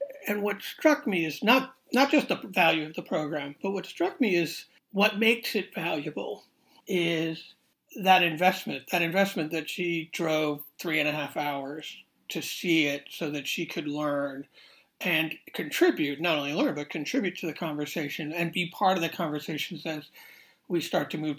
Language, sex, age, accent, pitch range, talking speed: English, male, 60-79, American, 155-200 Hz, 180 wpm